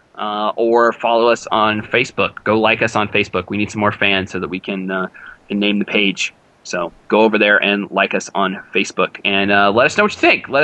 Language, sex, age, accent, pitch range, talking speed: English, male, 20-39, American, 105-120 Hz, 245 wpm